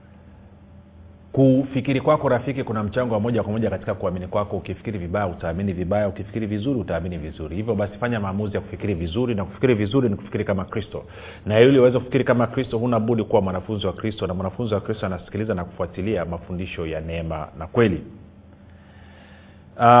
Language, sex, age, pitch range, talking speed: Swahili, male, 40-59, 95-115 Hz, 175 wpm